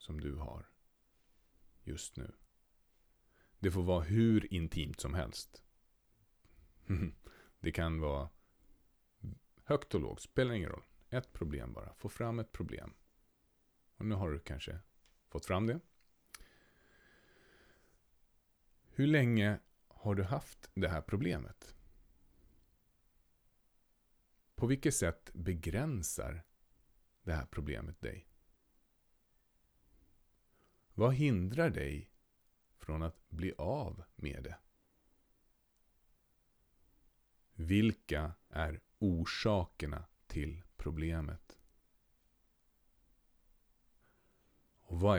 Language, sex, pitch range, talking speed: Swedish, male, 75-105 Hz, 90 wpm